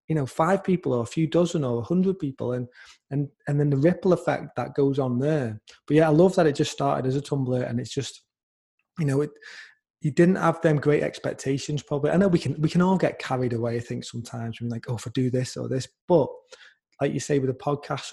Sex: male